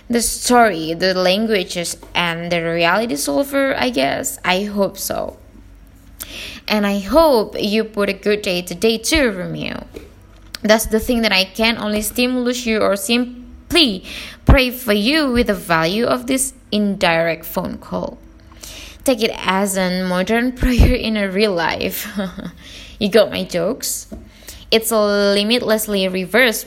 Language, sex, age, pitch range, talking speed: English, female, 20-39, 185-240 Hz, 145 wpm